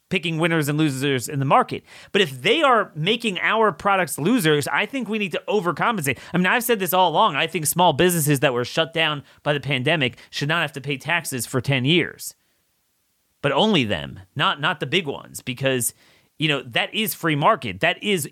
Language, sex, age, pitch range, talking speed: English, male, 30-49, 135-185 Hz, 215 wpm